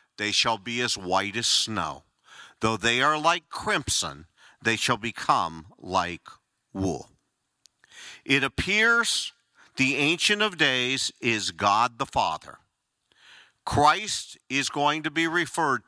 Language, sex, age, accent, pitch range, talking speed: English, male, 50-69, American, 120-185 Hz, 125 wpm